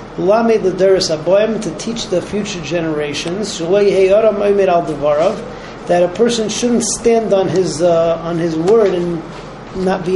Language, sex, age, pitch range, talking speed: English, male, 40-59, 170-205 Hz, 140 wpm